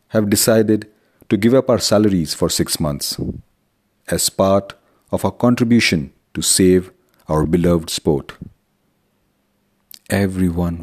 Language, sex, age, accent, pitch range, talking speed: English, male, 50-69, Indian, 85-115 Hz, 115 wpm